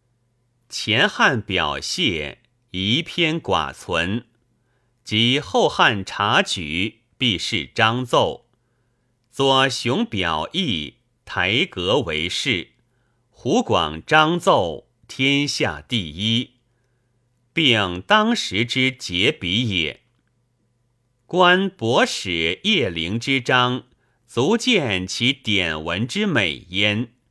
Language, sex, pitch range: Chinese, male, 110-125 Hz